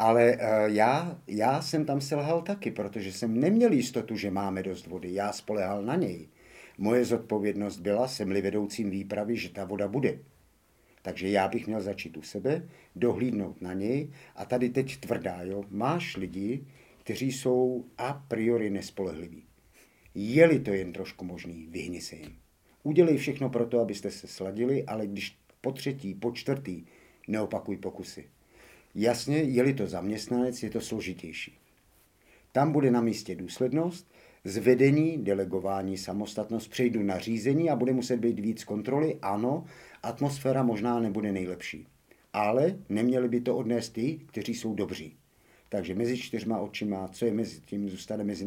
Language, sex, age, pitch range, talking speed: Czech, male, 50-69, 100-125 Hz, 150 wpm